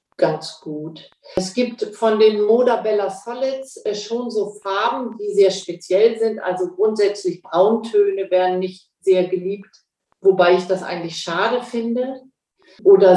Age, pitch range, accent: 50-69, 185-230 Hz, German